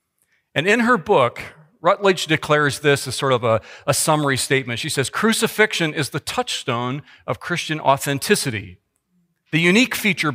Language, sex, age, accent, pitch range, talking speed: English, male, 40-59, American, 120-175 Hz, 150 wpm